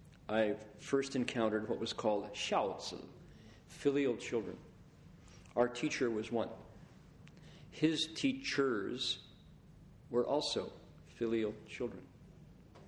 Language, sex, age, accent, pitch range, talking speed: English, male, 50-69, American, 115-135 Hz, 90 wpm